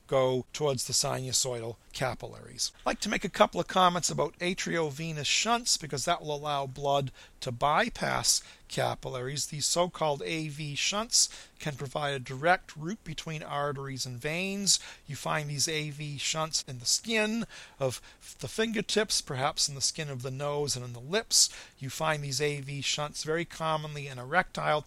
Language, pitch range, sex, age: English, 140-175 Hz, male, 40-59